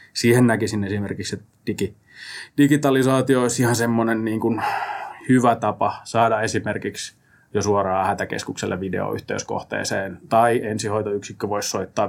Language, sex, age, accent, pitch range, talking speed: Finnish, male, 20-39, native, 105-115 Hz, 115 wpm